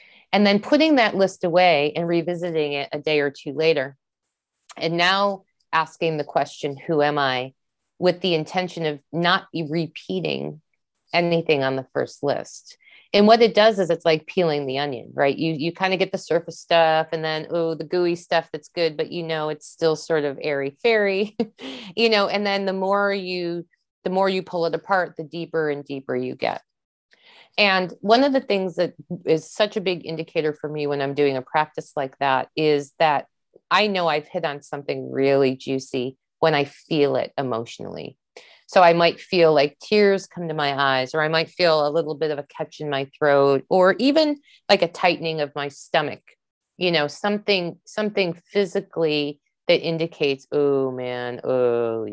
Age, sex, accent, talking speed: 30-49, female, American, 190 wpm